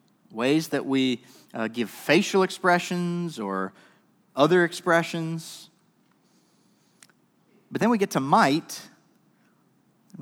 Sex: male